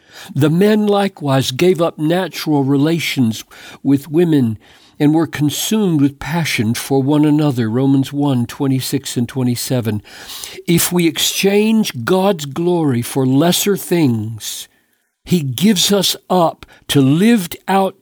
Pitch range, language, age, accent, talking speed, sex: 130-175 Hz, English, 60-79, American, 125 wpm, male